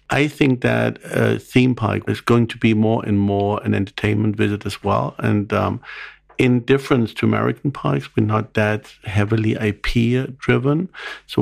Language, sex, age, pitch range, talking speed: English, male, 50-69, 100-120 Hz, 165 wpm